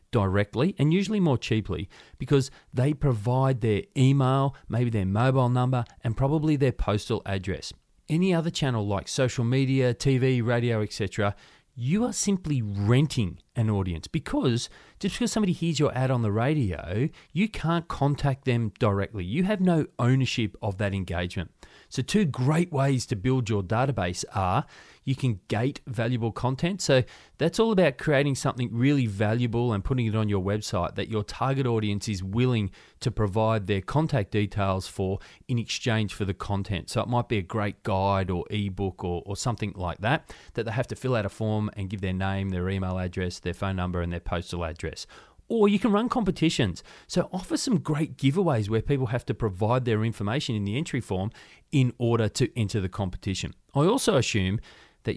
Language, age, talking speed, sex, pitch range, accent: English, 30-49, 185 wpm, male, 100-135 Hz, Australian